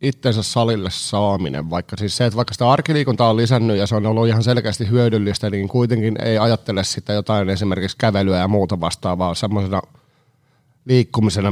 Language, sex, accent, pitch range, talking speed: Finnish, male, native, 100-125 Hz, 170 wpm